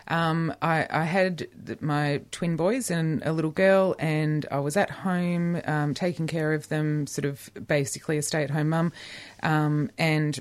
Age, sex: 20-39, female